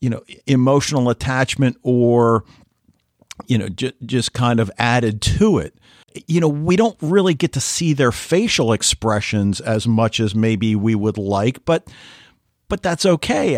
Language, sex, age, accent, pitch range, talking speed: English, male, 50-69, American, 110-140 Hz, 160 wpm